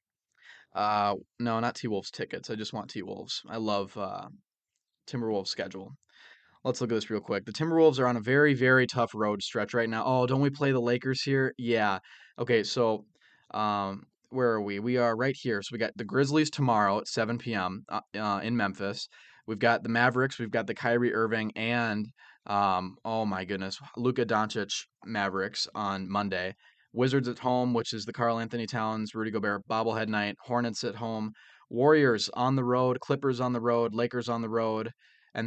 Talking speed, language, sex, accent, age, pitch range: 185 wpm, English, male, American, 20-39, 105-125 Hz